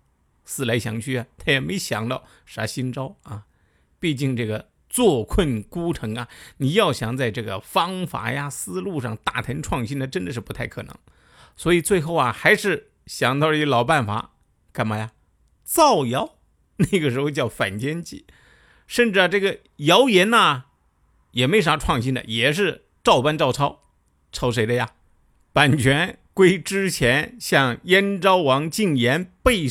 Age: 50-69